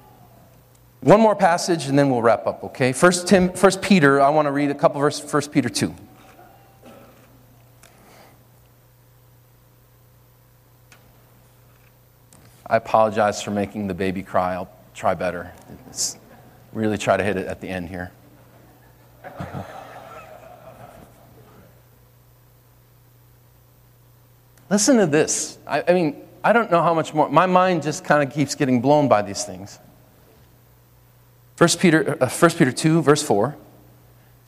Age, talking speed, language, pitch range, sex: 40-59, 125 wpm, English, 120-155 Hz, male